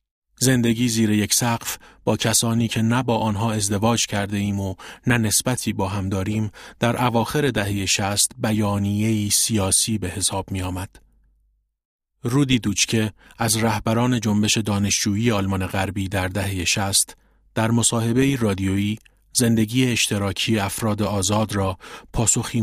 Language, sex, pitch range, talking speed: Persian, male, 100-115 Hz, 125 wpm